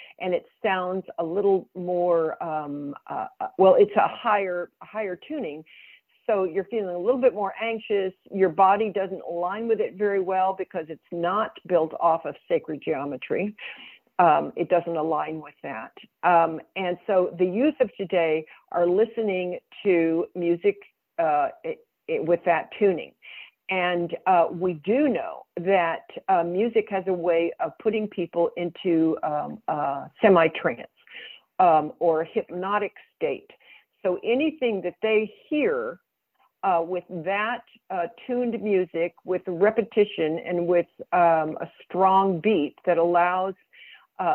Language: English